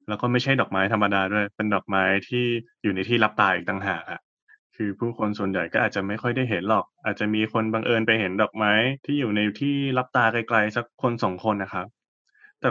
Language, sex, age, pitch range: Thai, male, 20-39, 100-120 Hz